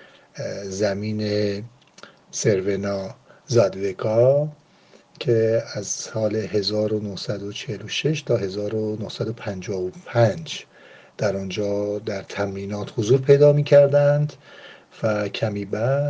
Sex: male